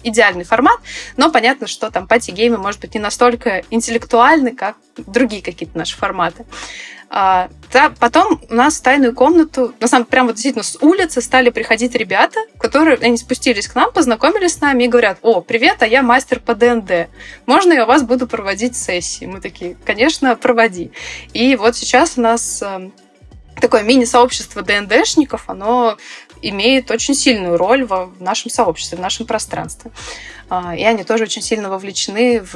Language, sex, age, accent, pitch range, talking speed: Russian, female, 20-39, native, 205-255 Hz, 165 wpm